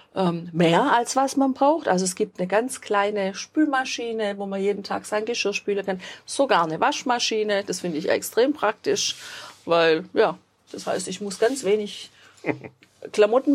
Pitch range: 200-275 Hz